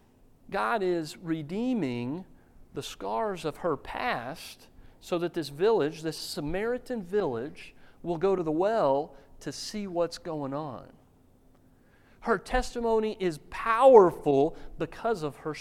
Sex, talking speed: male, 125 wpm